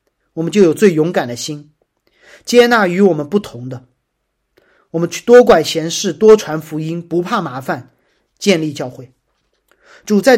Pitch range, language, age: 150-205 Hz, Chinese, 40-59